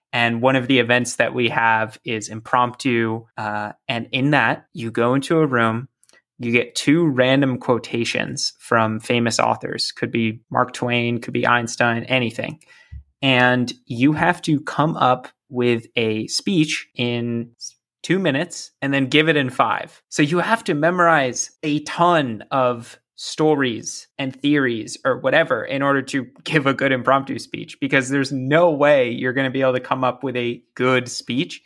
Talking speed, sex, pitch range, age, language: 170 wpm, male, 120-140 Hz, 20-39, English